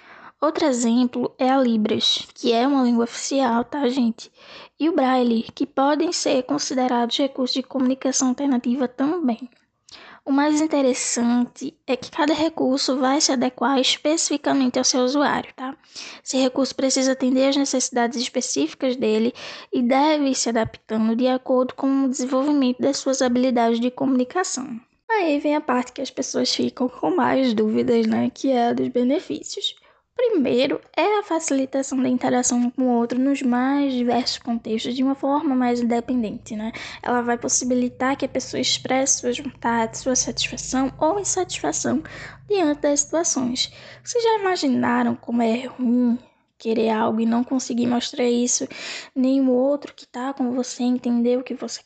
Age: 10-29